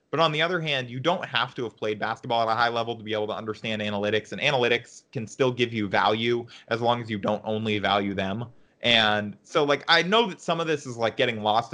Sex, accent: male, American